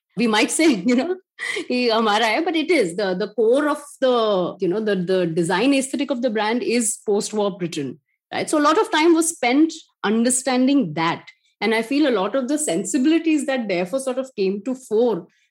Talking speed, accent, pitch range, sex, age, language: 195 wpm, Indian, 205-285 Hz, female, 30-49, English